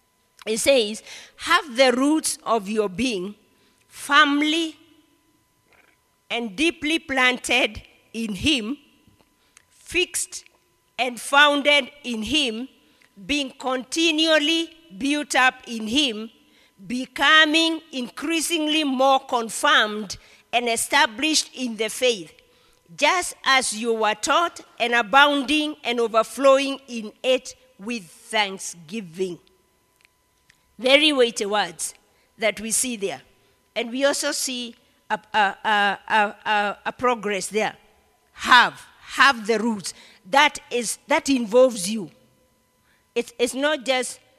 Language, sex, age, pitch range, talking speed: English, female, 40-59, 225-290 Hz, 105 wpm